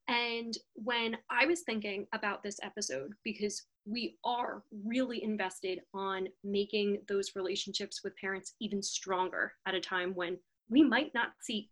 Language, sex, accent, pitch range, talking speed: English, female, American, 200-250 Hz, 150 wpm